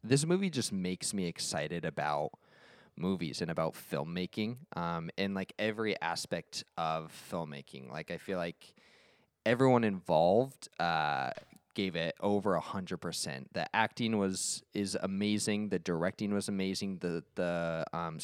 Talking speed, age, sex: 140 wpm, 20-39, male